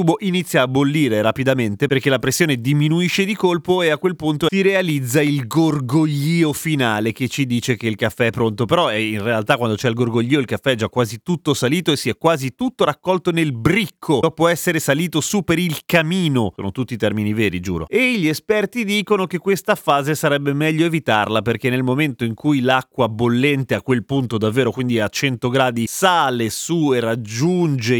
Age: 30-49